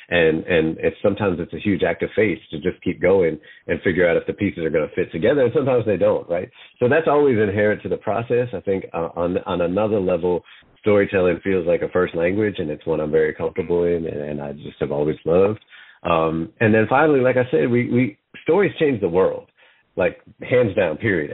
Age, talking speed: 40-59, 230 wpm